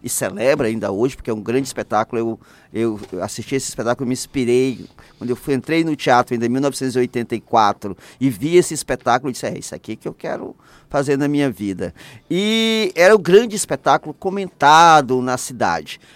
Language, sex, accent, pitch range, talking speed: Portuguese, male, Brazilian, 130-180 Hz, 190 wpm